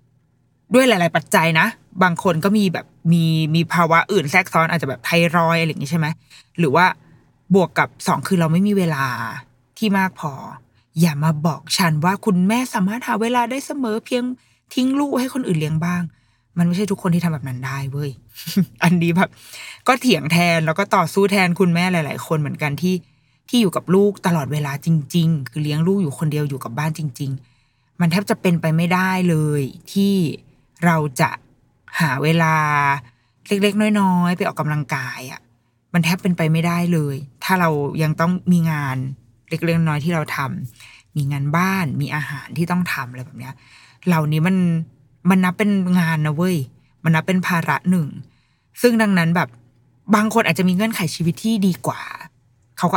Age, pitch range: 20-39, 145-185 Hz